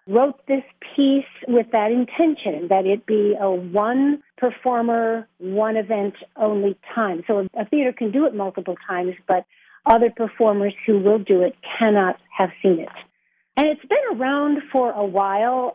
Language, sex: English, female